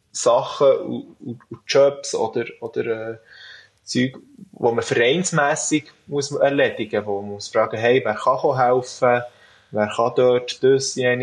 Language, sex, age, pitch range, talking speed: German, male, 20-39, 115-145 Hz, 140 wpm